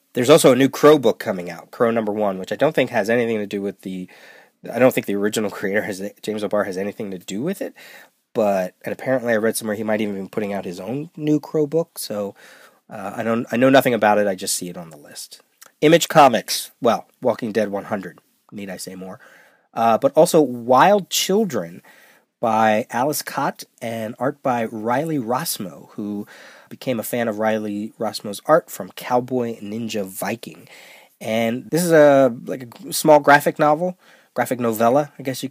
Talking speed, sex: 200 wpm, male